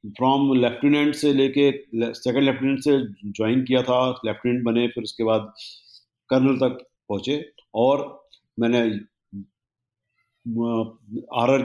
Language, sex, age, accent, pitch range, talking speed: Hindi, male, 50-69, native, 110-130 Hz, 110 wpm